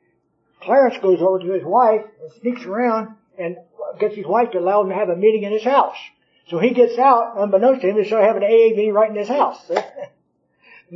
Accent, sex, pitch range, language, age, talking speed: American, male, 170-220 Hz, English, 60-79, 225 wpm